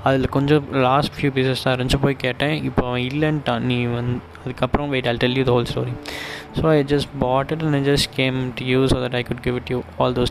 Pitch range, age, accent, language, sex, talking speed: 120-135 Hz, 20-39, native, Tamil, male, 205 wpm